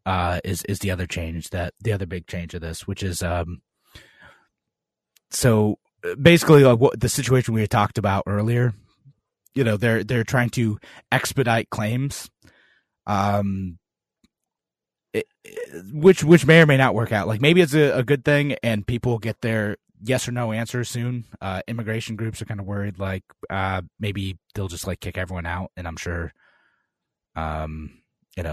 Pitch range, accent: 95-120 Hz, American